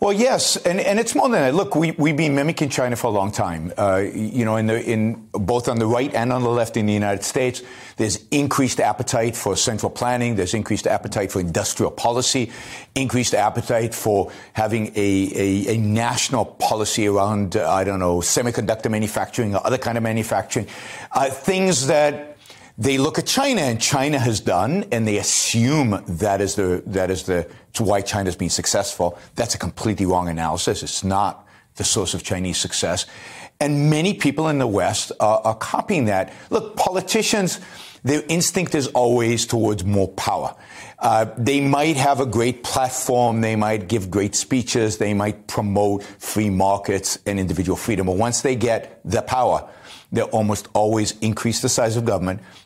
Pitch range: 100-135 Hz